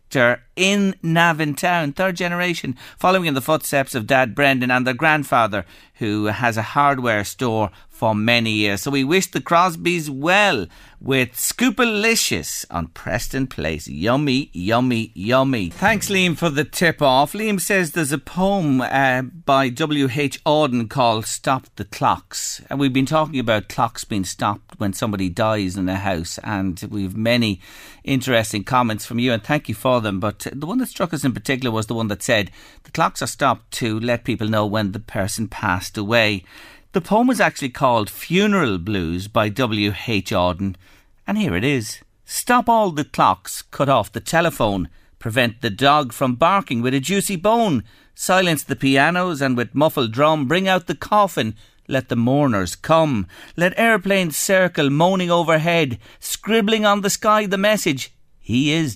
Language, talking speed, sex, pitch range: English, 170 wpm, male, 110-170 Hz